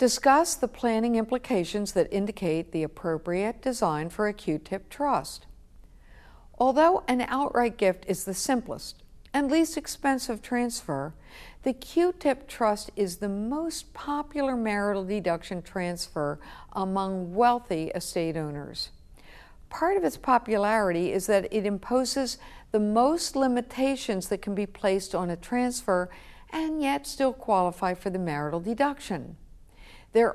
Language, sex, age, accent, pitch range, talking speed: English, female, 60-79, American, 180-245 Hz, 130 wpm